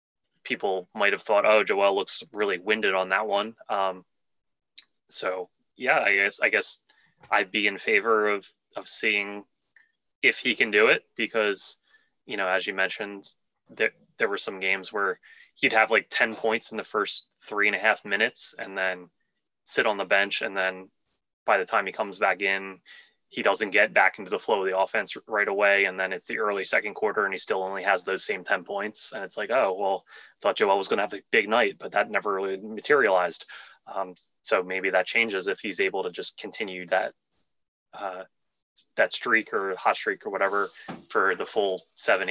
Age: 20-39